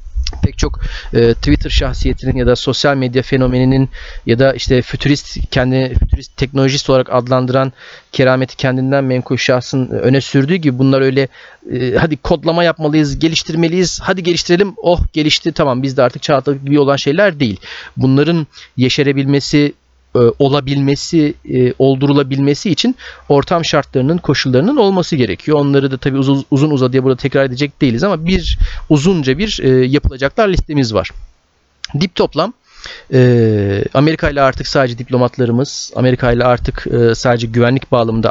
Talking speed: 135 wpm